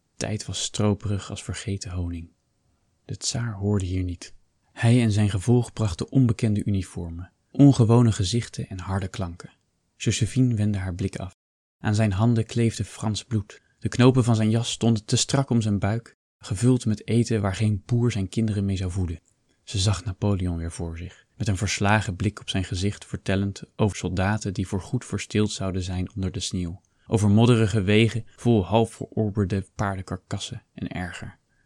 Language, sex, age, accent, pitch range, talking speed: Dutch, male, 20-39, Dutch, 95-115 Hz, 170 wpm